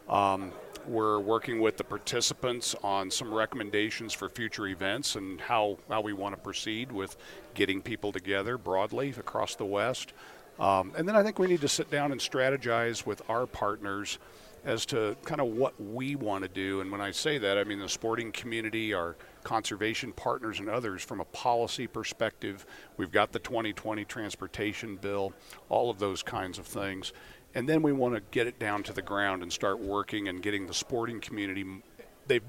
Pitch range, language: 95-115 Hz, English